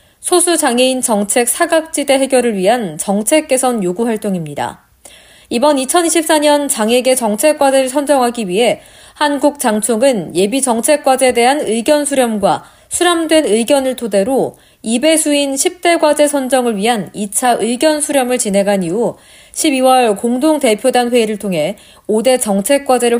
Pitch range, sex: 215-295 Hz, female